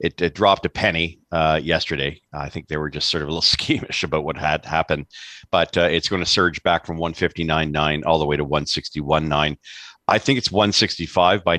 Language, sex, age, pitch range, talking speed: English, male, 50-69, 75-90 Hz, 220 wpm